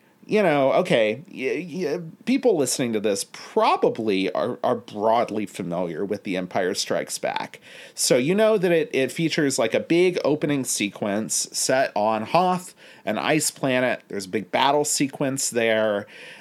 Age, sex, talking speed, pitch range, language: 40-59, male, 150 wpm, 110-160 Hz, English